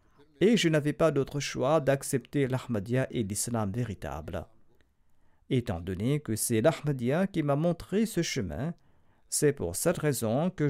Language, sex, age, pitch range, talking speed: French, male, 50-69, 100-145 Hz, 145 wpm